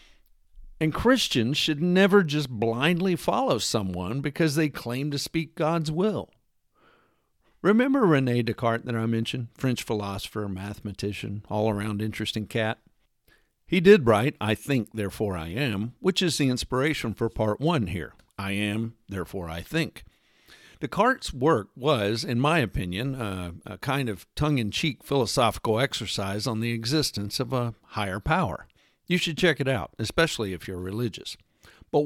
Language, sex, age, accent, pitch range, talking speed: English, male, 50-69, American, 105-150 Hz, 145 wpm